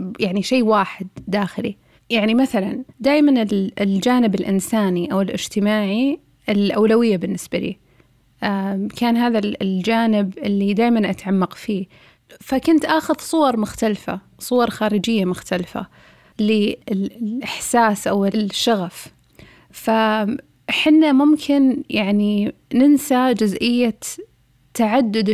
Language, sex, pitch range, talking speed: Arabic, female, 205-250 Hz, 90 wpm